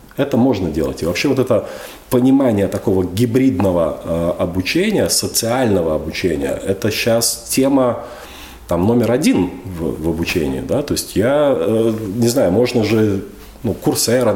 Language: Russian